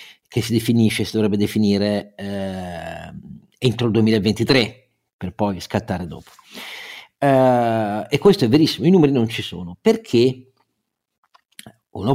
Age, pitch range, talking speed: 50-69, 100-125 Hz, 130 wpm